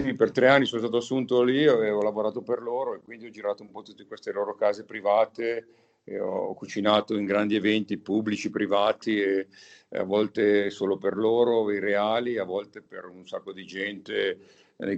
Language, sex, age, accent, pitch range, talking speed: Italian, male, 50-69, native, 105-120 Hz, 190 wpm